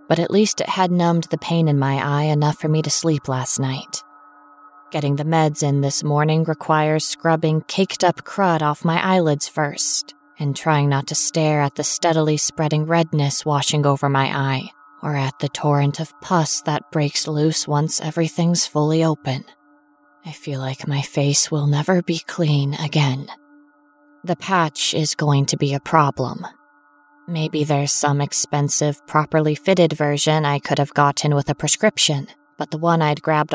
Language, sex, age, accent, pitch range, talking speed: English, female, 20-39, American, 145-160 Hz, 170 wpm